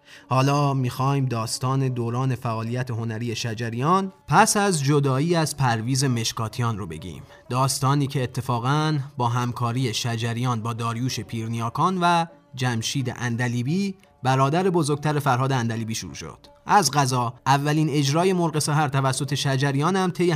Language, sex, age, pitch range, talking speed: Persian, male, 30-49, 120-145 Hz, 125 wpm